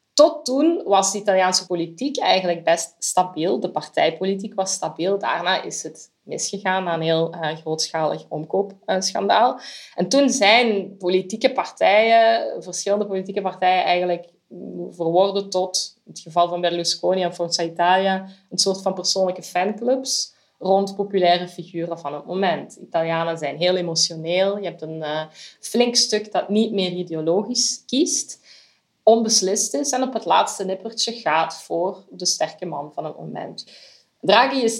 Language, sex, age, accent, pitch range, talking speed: Dutch, female, 20-39, Belgian, 170-205 Hz, 150 wpm